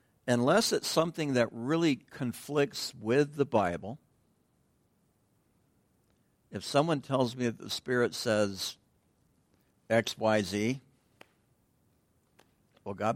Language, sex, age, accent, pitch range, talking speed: English, male, 60-79, American, 105-140 Hz, 100 wpm